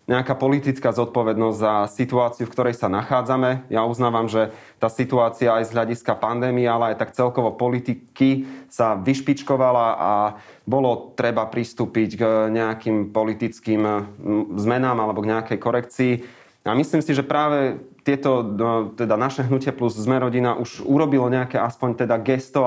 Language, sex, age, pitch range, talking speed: Slovak, male, 30-49, 115-130 Hz, 145 wpm